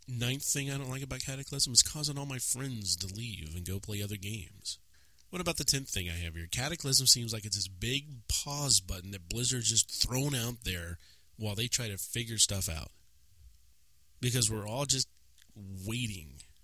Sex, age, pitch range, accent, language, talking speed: male, 30-49, 90-130 Hz, American, English, 190 wpm